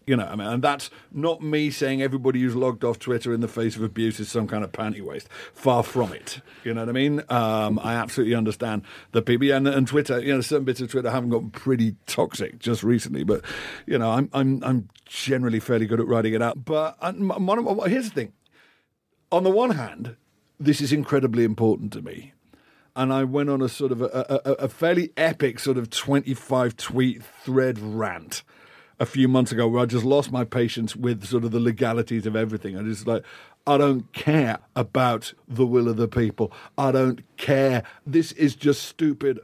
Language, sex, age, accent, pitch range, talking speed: English, male, 50-69, British, 115-140 Hz, 210 wpm